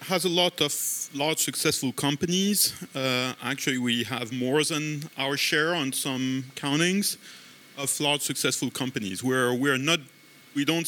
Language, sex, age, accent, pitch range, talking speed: English, male, 40-59, French, 115-140 Hz, 150 wpm